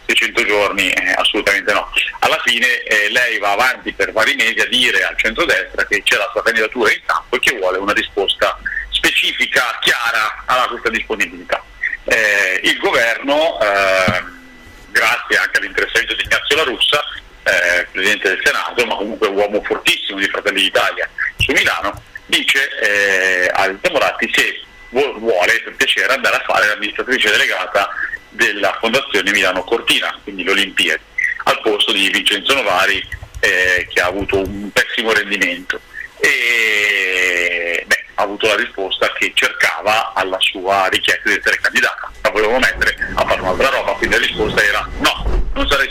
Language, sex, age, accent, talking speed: Italian, male, 40-59, native, 155 wpm